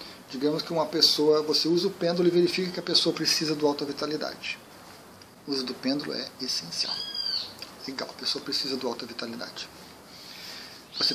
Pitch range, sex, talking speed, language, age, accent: 140-180 Hz, male, 165 wpm, Portuguese, 40-59, Brazilian